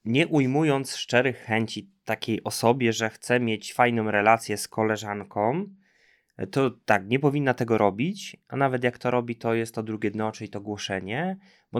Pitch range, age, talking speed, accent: 120-175 Hz, 20-39, 170 wpm, native